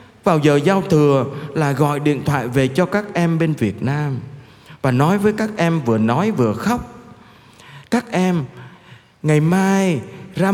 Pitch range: 125-180 Hz